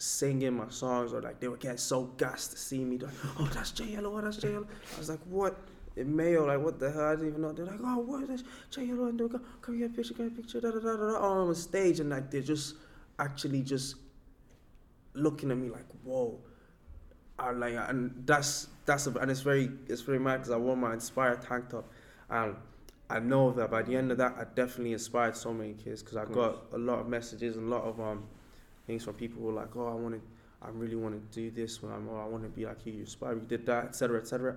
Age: 20-39